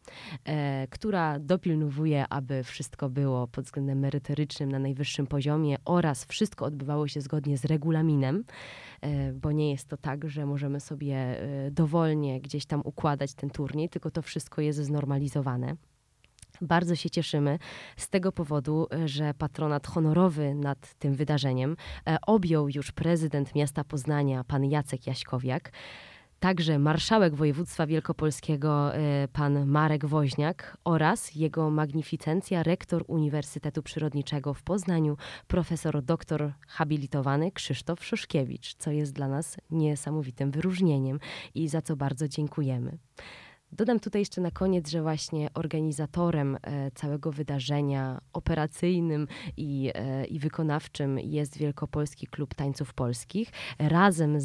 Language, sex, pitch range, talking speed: Polish, female, 140-160 Hz, 120 wpm